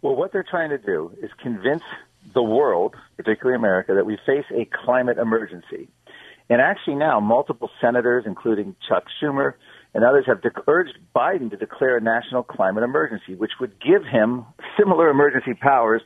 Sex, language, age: male, English, 50-69